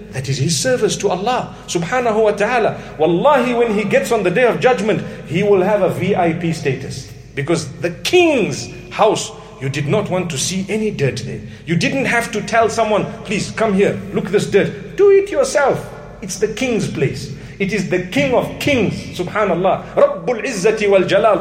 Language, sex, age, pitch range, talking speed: English, male, 50-69, 185-250 Hz, 190 wpm